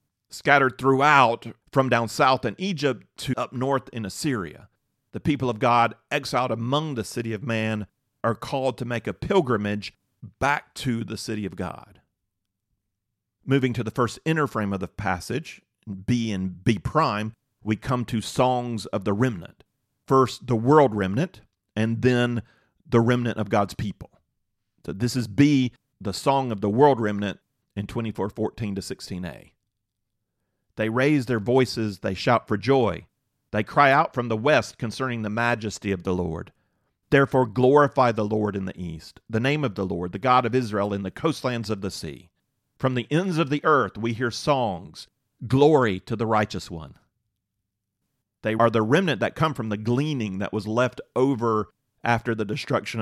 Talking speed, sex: 175 wpm, male